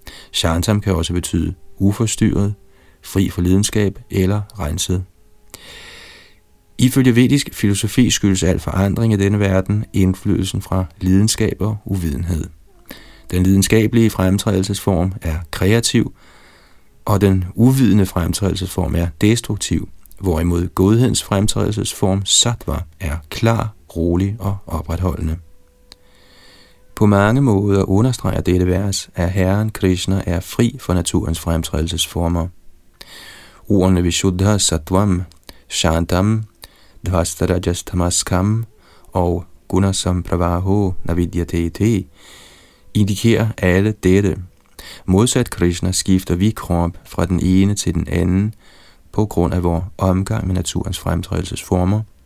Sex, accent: male, native